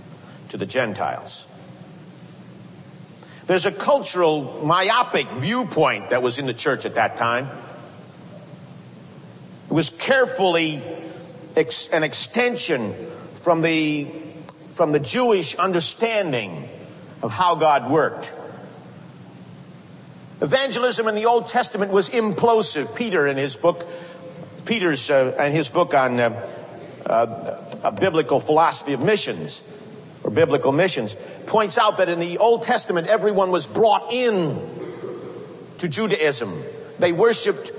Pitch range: 160-225 Hz